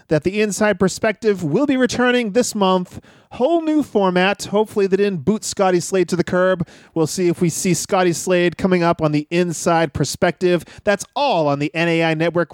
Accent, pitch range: American, 165-210 Hz